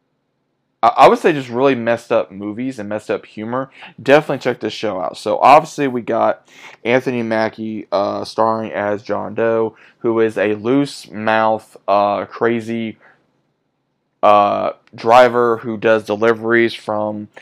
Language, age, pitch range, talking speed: English, 20-39, 105-120 Hz, 140 wpm